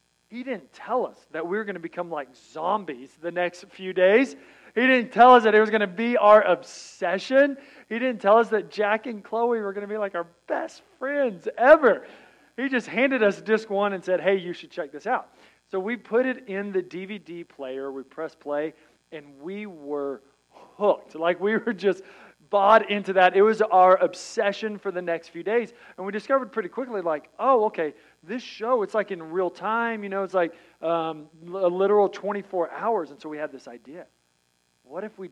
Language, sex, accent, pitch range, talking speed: English, male, American, 165-220 Hz, 210 wpm